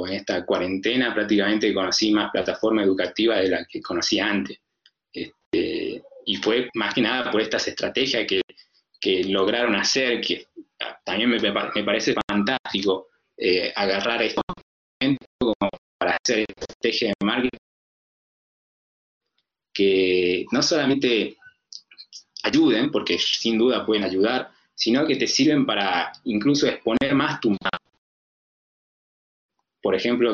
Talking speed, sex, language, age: 120 wpm, male, Spanish, 30-49